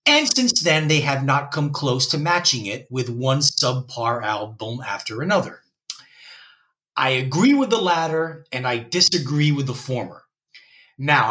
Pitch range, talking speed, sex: 135-175 Hz, 155 wpm, male